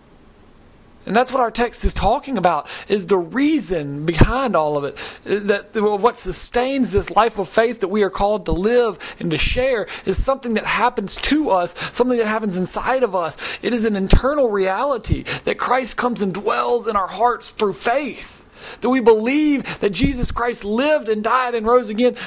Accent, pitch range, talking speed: American, 195-240 Hz, 190 wpm